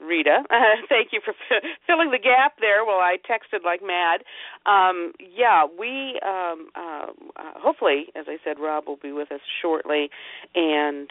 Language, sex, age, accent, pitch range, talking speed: English, female, 50-69, American, 140-205 Hz, 160 wpm